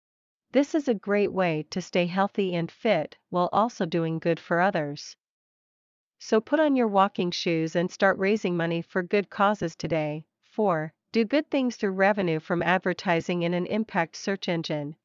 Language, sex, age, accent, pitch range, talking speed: English, female, 40-59, American, 170-210 Hz, 170 wpm